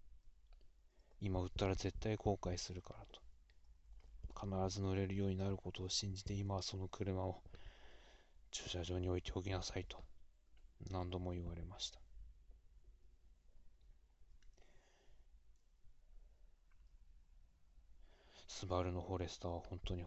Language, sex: Japanese, male